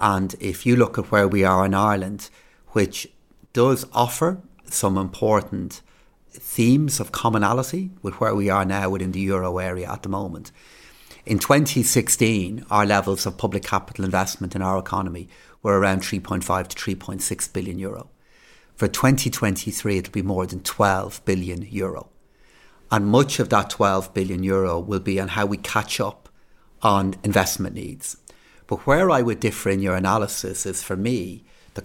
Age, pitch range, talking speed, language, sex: 30-49, 95-115 Hz, 160 wpm, English, male